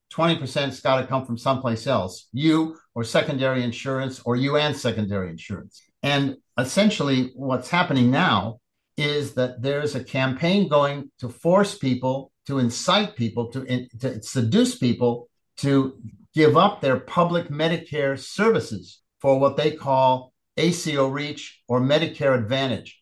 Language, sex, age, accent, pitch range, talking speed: English, male, 50-69, American, 125-160 Hz, 140 wpm